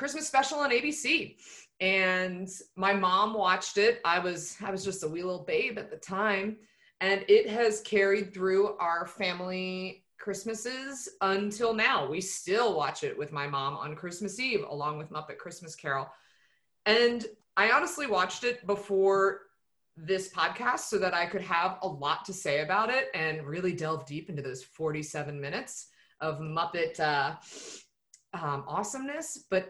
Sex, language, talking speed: female, English, 160 wpm